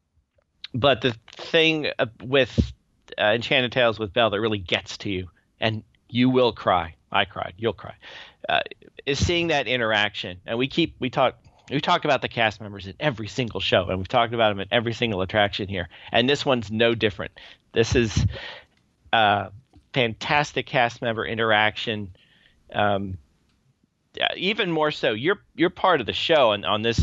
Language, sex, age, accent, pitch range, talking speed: English, male, 40-59, American, 105-130 Hz, 170 wpm